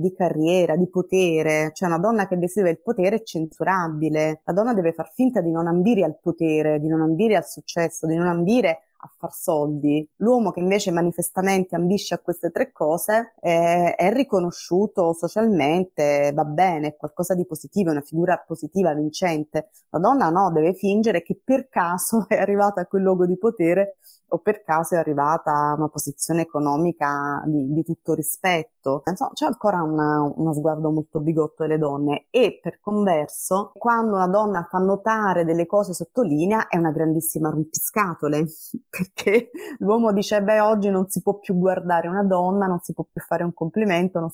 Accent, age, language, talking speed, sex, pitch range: native, 20-39, Italian, 175 wpm, female, 160-195 Hz